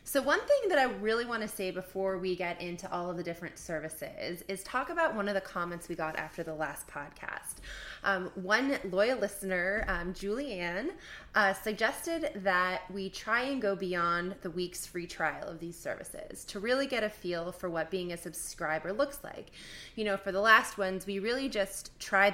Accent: American